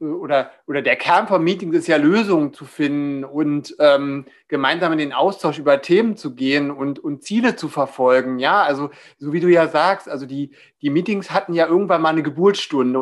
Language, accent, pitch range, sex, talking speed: German, German, 145-190 Hz, male, 200 wpm